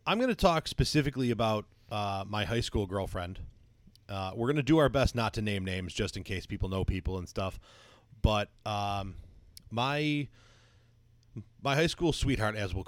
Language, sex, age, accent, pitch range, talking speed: English, male, 30-49, American, 100-120 Hz, 180 wpm